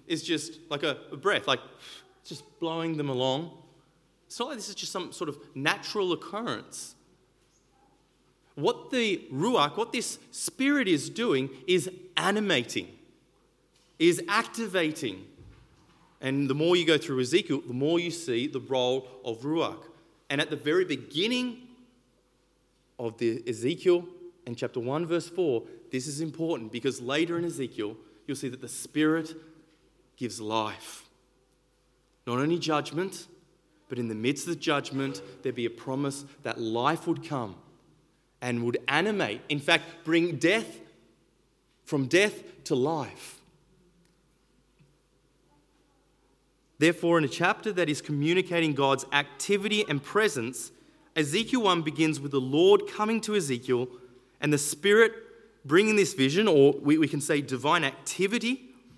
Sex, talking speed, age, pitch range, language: male, 140 wpm, 30-49, 135-180 Hz, English